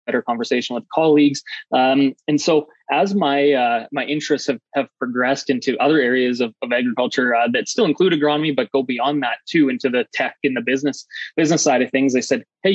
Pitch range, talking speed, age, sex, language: 130-150 Hz, 205 wpm, 20-39, male, English